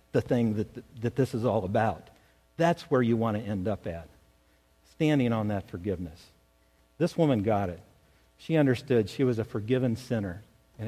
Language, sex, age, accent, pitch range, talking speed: English, male, 50-69, American, 105-175 Hz, 180 wpm